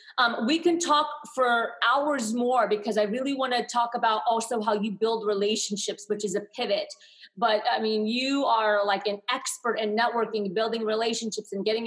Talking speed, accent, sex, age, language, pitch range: 185 wpm, American, female, 30-49, English, 210-240 Hz